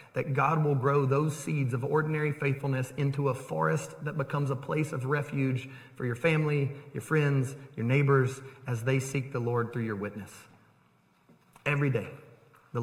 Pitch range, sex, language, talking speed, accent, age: 115-140 Hz, male, English, 170 wpm, American, 30-49